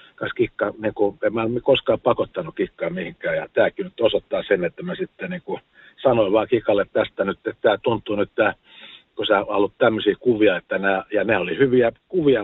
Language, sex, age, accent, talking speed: Finnish, male, 50-69, native, 200 wpm